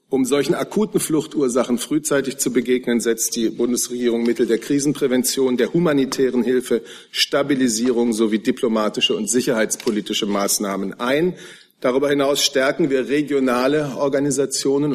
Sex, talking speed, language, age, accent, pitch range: male, 115 wpm, German, 50-69, German, 115-140 Hz